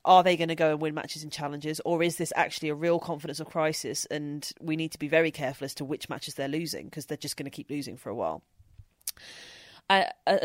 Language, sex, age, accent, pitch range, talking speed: English, female, 30-49, British, 150-175 Hz, 245 wpm